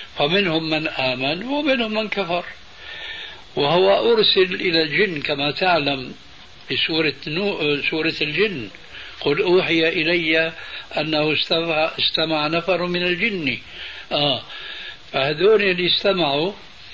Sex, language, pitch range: male, Arabic, 150-200 Hz